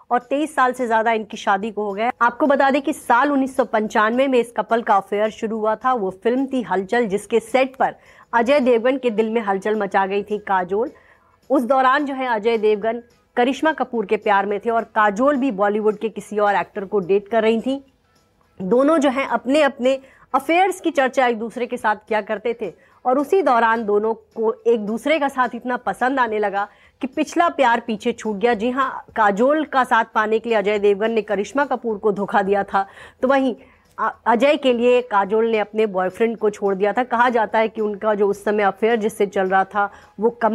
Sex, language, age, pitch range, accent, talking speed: female, English, 30-49, 215-255 Hz, Indian, 190 wpm